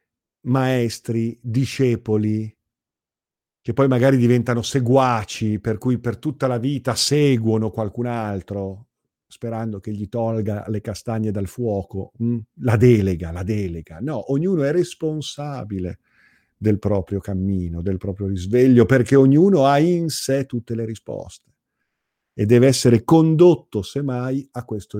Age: 50-69